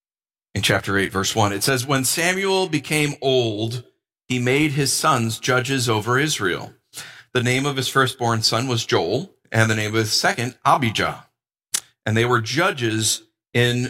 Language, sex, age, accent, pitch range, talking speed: English, male, 40-59, American, 115-155 Hz, 165 wpm